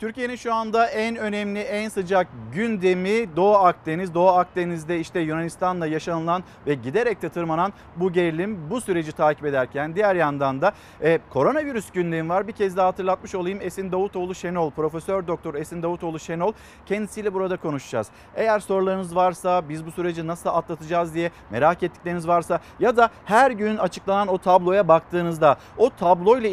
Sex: male